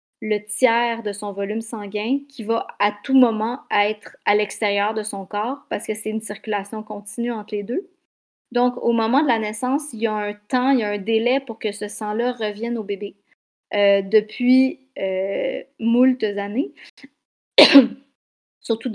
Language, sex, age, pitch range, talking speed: French, female, 30-49, 210-255 Hz, 175 wpm